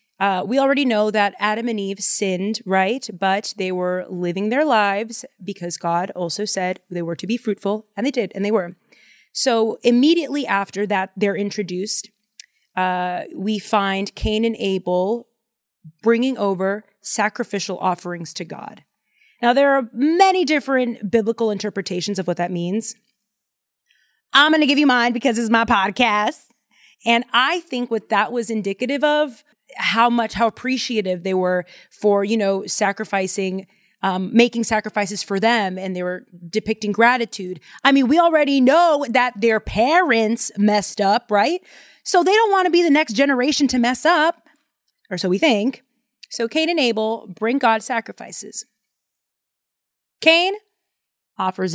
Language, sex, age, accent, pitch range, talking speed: English, female, 30-49, American, 195-250 Hz, 155 wpm